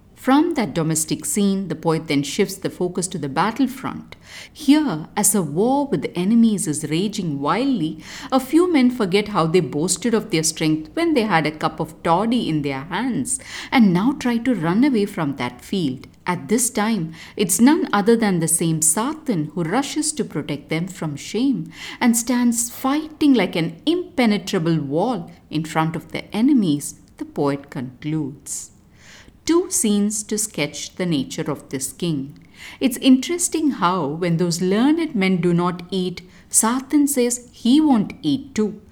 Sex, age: female, 50-69